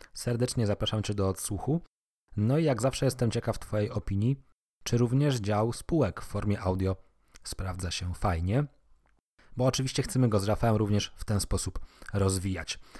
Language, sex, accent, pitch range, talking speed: Polish, male, native, 100-125 Hz, 155 wpm